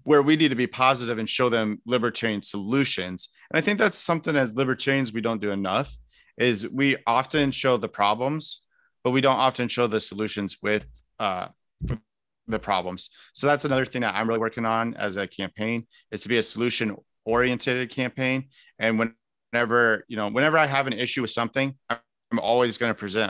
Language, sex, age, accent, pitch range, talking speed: English, male, 30-49, American, 110-135 Hz, 180 wpm